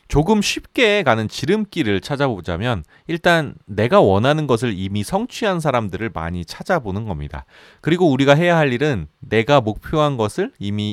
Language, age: Korean, 30-49